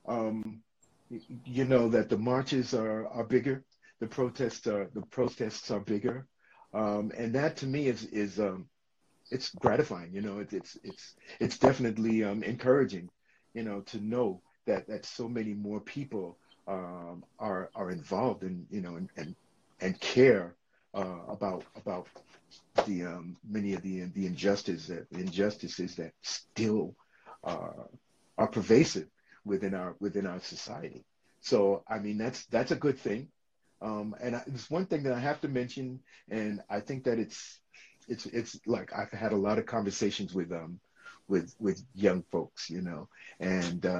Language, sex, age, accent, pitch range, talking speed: English, male, 50-69, American, 95-125 Hz, 160 wpm